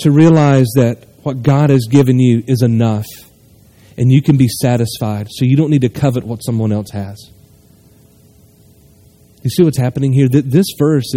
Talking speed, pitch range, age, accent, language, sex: 170 wpm, 120-165 Hz, 30-49, American, English, male